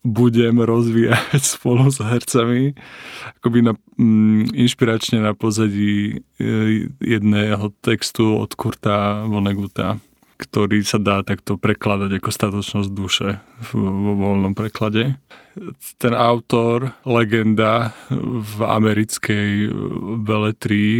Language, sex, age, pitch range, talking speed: Slovak, male, 20-39, 105-115 Hz, 90 wpm